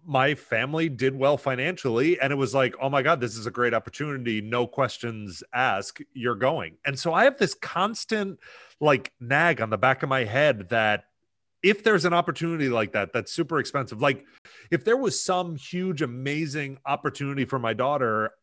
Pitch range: 120-170 Hz